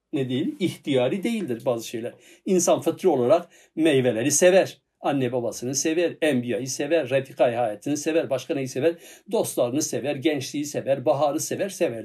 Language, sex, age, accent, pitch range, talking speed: Turkish, male, 60-79, native, 135-190 Hz, 145 wpm